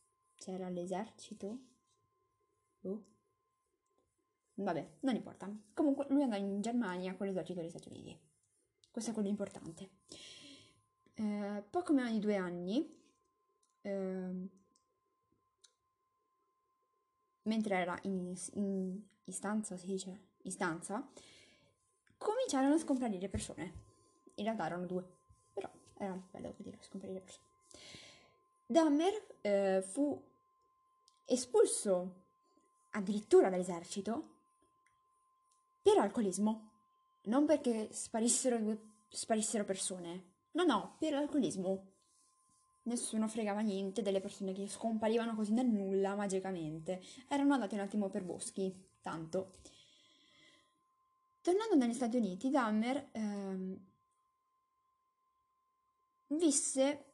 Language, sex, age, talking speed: English, female, 20-39, 95 wpm